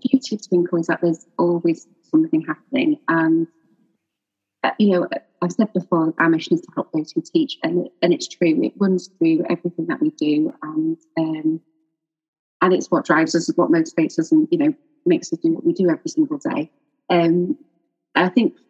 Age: 30-49